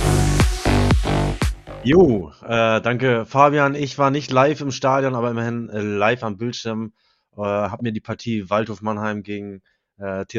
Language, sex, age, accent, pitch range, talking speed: German, male, 20-39, German, 100-120 Hz, 140 wpm